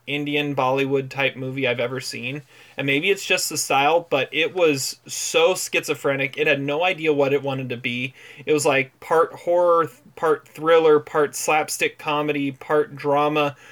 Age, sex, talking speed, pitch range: 30-49, male, 170 wpm, 135-155 Hz